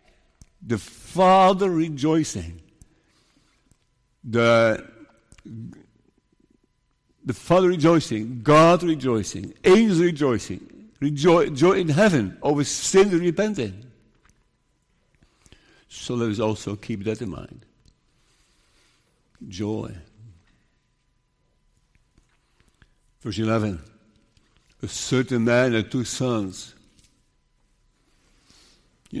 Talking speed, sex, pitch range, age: 75 wpm, male, 115-165 Hz, 60-79